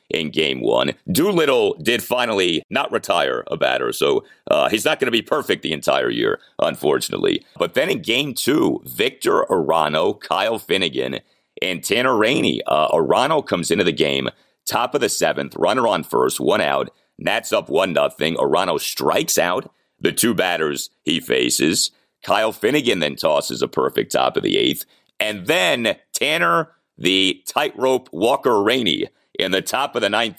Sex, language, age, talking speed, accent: male, English, 40-59, 165 wpm, American